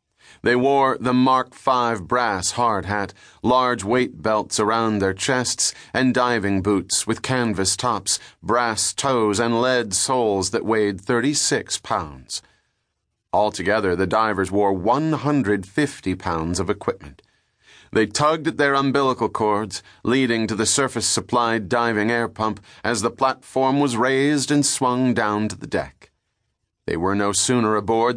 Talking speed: 140 wpm